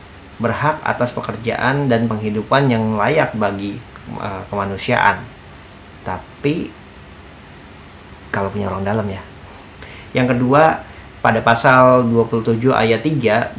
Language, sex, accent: Indonesian, male, native